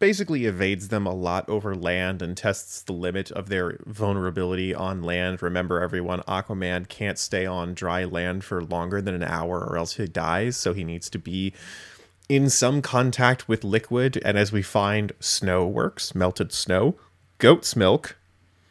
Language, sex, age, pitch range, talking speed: English, male, 20-39, 90-115 Hz, 170 wpm